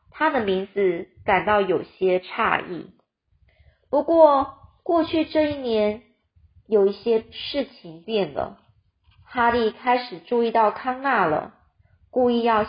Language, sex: Chinese, female